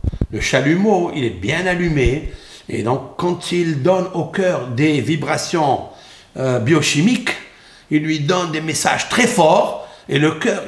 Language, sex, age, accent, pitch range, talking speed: French, male, 60-79, French, 135-190 Hz, 150 wpm